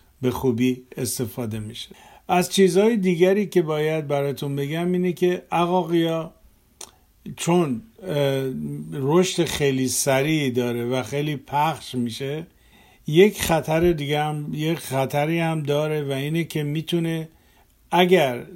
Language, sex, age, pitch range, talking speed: Persian, male, 50-69, 130-165 Hz, 115 wpm